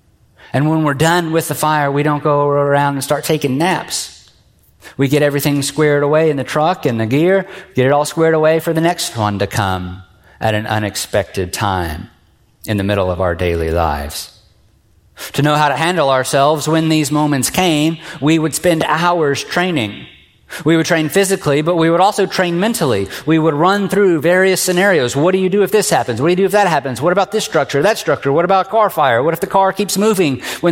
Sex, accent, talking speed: male, American, 215 wpm